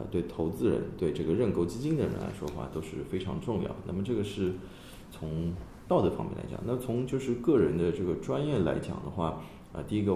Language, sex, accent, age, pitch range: Chinese, male, native, 20-39, 75-95 Hz